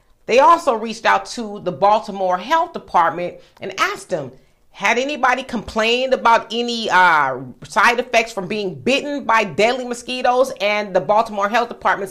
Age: 40-59